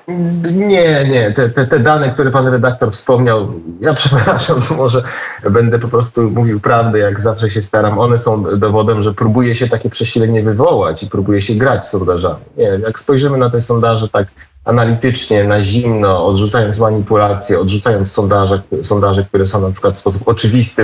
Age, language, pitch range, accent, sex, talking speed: 30-49, Polish, 105-135 Hz, native, male, 165 wpm